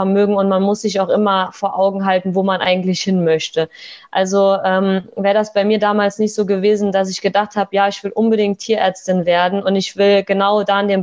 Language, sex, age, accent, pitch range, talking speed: German, female, 20-39, German, 190-210 Hz, 230 wpm